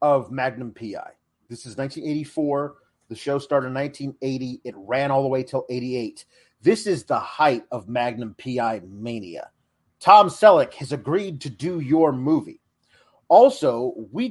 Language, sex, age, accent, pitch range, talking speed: English, male, 30-49, American, 125-210 Hz, 150 wpm